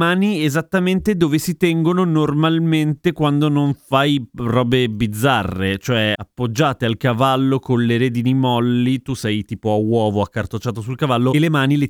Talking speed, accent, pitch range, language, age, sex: 155 wpm, native, 115-155 Hz, Italian, 30-49, male